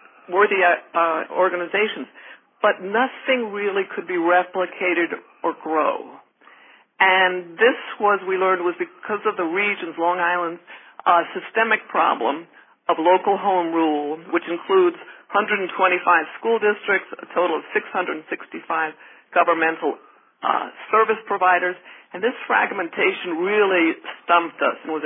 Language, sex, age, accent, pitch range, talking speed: English, female, 50-69, American, 170-210 Hz, 125 wpm